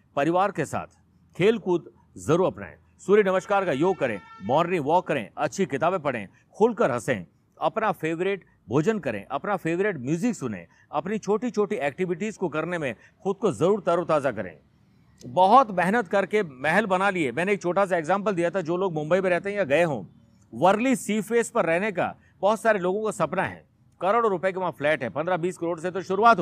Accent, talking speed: native, 190 wpm